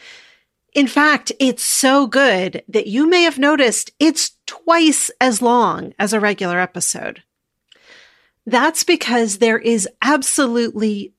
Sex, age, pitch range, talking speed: female, 40-59, 215-275 Hz, 125 wpm